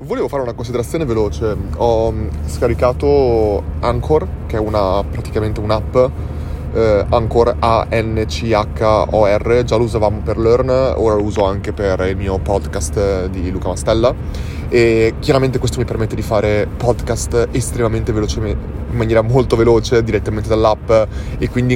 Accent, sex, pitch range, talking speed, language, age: native, male, 105-120 Hz, 135 wpm, Italian, 20-39